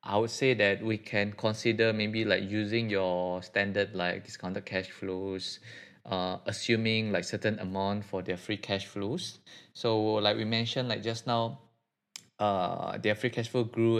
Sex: male